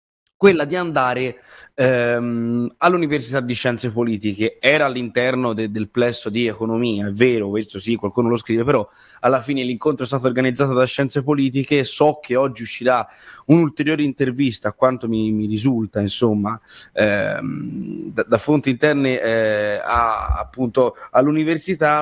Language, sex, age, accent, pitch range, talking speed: Italian, male, 20-39, native, 120-150 Hz, 145 wpm